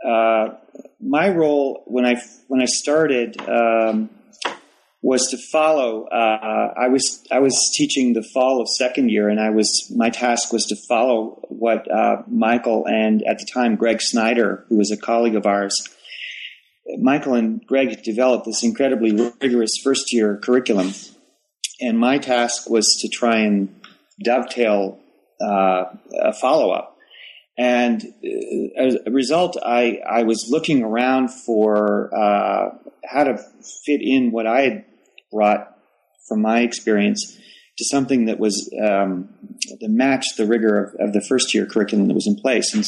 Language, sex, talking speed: English, male, 150 wpm